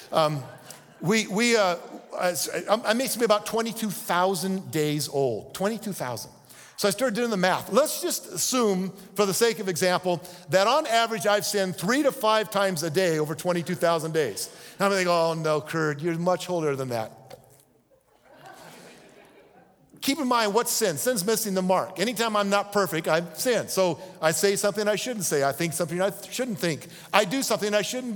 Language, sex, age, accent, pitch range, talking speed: English, male, 50-69, American, 180-250 Hz, 170 wpm